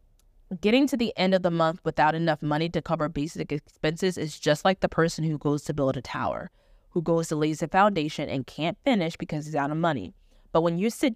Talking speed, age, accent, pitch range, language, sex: 230 wpm, 20-39, American, 160-205 Hz, English, female